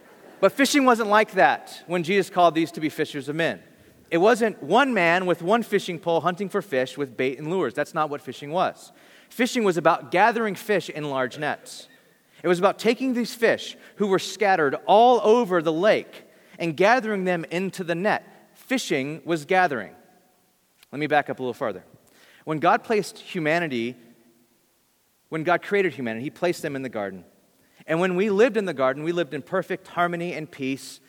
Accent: American